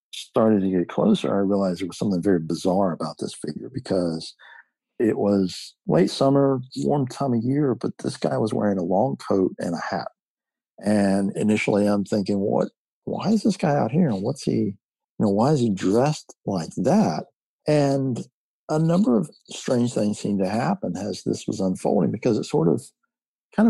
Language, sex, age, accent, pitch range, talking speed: English, male, 50-69, American, 95-115 Hz, 185 wpm